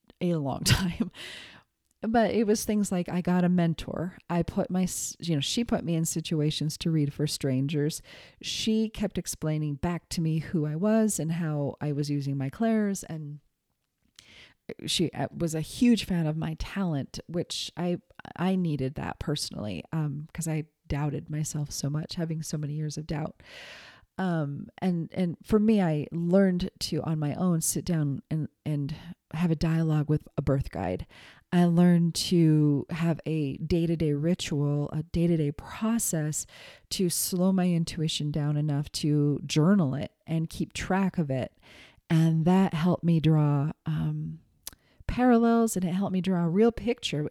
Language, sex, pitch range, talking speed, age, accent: English, female, 150-185 Hz, 165 wpm, 30-49, American